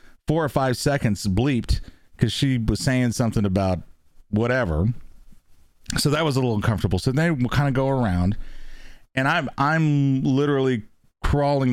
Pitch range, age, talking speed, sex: 90-130 Hz, 40-59, 155 wpm, male